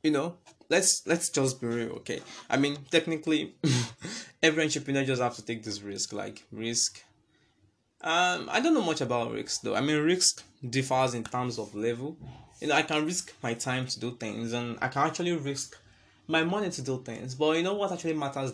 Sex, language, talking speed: male, English, 205 wpm